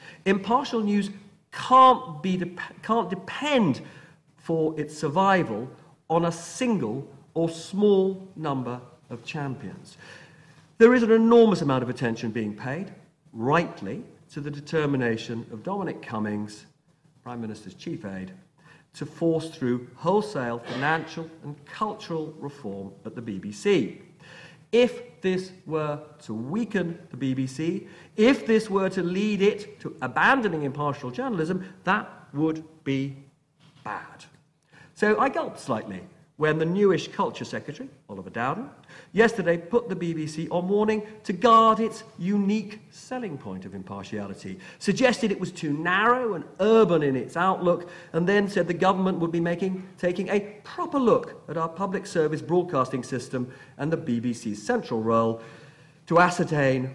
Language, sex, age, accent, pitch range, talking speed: English, male, 50-69, British, 140-195 Hz, 135 wpm